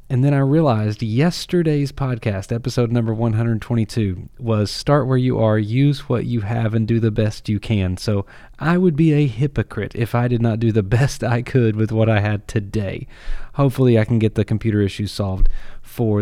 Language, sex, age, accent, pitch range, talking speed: English, male, 30-49, American, 105-130 Hz, 195 wpm